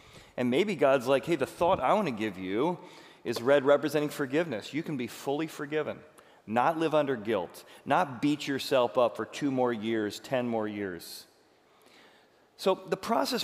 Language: English